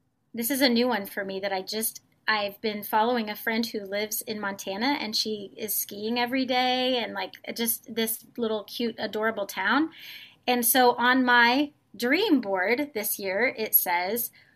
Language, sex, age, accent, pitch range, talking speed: English, female, 30-49, American, 215-265 Hz, 175 wpm